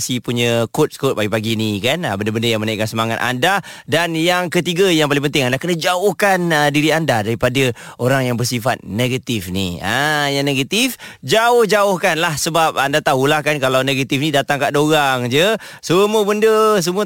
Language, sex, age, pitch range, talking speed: Malay, male, 30-49, 125-170 Hz, 170 wpm